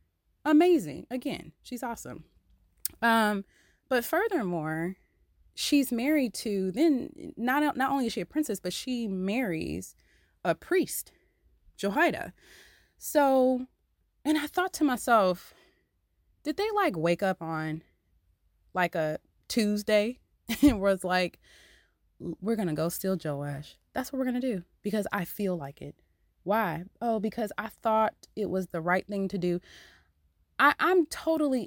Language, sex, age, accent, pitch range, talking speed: English, female, 20-39, American, 165-255 Hz, 140 wpm